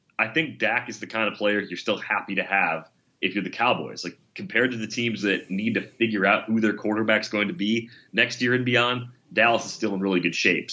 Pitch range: 95-115 Hz